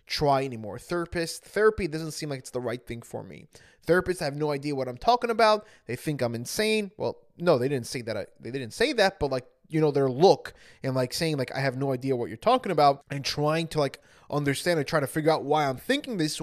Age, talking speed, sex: 20-39, 250 wpm, male